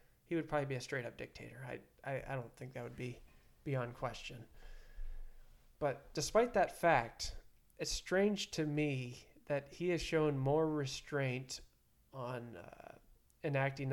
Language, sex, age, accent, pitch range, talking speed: English, male, 20-39, American, 130-150 Hz, 145 wpm